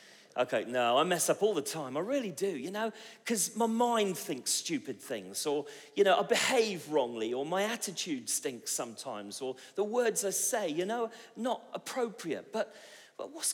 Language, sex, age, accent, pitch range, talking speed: English, male, 40-59, British, 120-200 Hz, 185 wpm